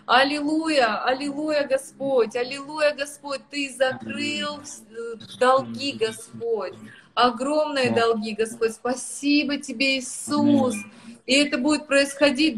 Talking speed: 90 wpm